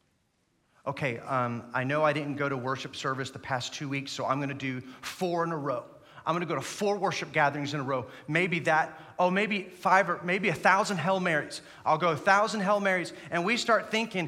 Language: English